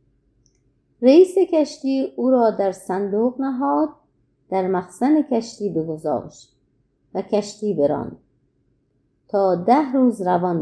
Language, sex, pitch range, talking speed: Persian, female, 175-245 Hz, 100 wpm